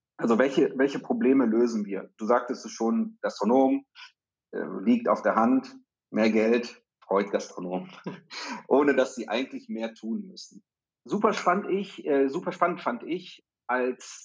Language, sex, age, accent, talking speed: German, male, 40-59, German, 150 wpm